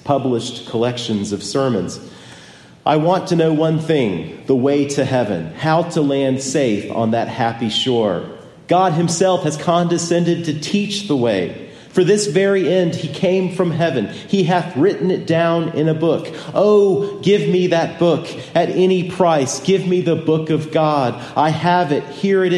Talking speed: 175 wpm